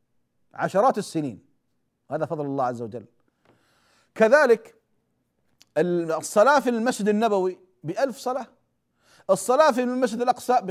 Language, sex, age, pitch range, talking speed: Arabic, male, 40-59, 165-235 Hz, 105 wpm